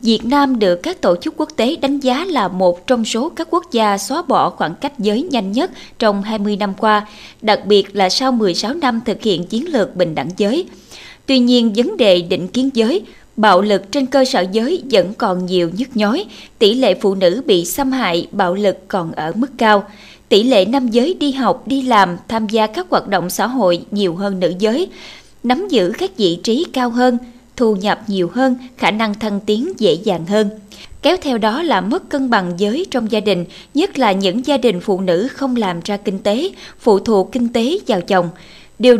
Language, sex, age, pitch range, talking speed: Vietnamese, female, 20-39, 195-260 Hz, 215 wpm